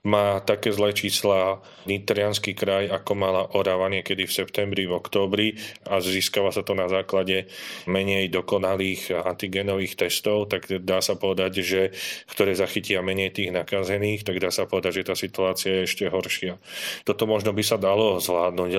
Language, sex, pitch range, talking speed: Slovak, male, 95-105 Hz, 160 wpm